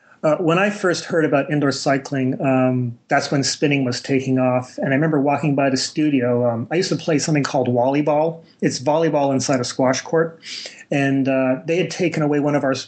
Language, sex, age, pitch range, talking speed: English, male, 30-49, 130-150 Hz, 210 wpm